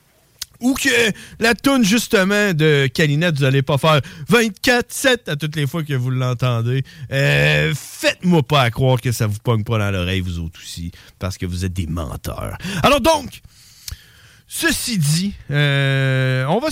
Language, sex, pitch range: French, male, 120-180 Hz